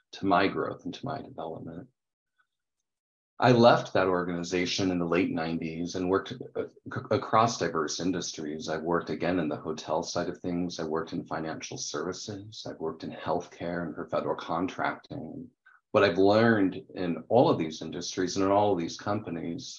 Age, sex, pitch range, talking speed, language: 40-59, male, 80-105 Hz, 175 wpm, English